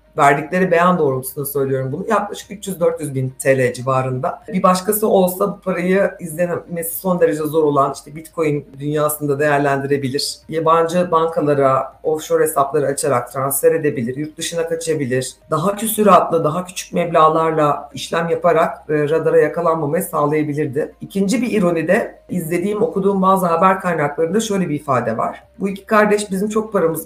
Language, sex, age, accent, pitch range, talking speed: Turkish, female, 60-79, native, 145-190 Hz, 140 wpm